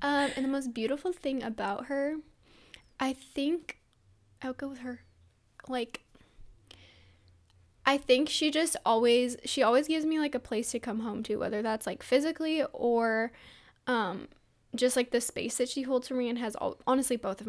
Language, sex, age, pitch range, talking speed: English, female, 10-29, 215-260 Hz, 180 wpm